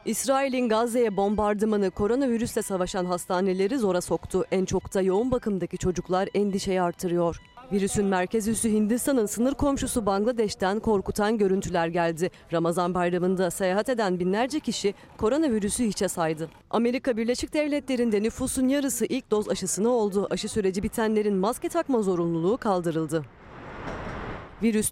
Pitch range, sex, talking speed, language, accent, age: 185-240 Hz, female, 125 wpm, Turkish, native, 40-59